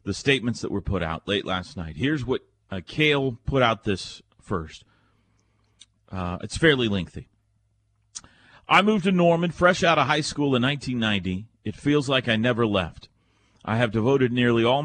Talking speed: 175 wpm